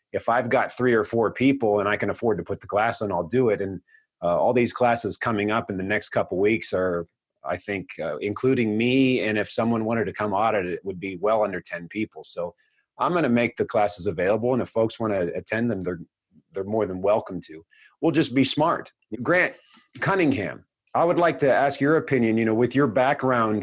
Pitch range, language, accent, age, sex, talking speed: 105-135 Hz, English, American, 30-49, male, 230 wpm